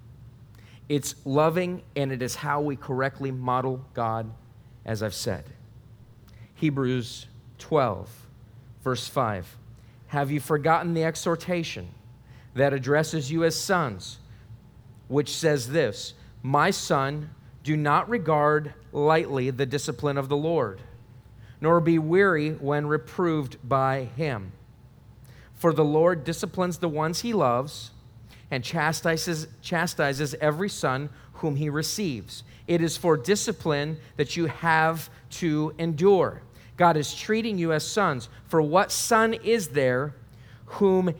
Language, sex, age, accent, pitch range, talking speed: English, male, 40-59, American, 125-165 Hz, 125 wpm